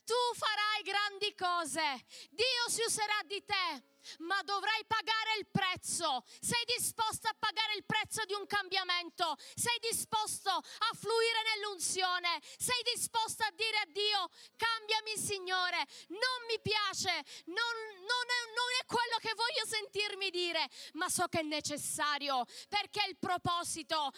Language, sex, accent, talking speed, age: Italian, female, native, 145 wpm, 30-49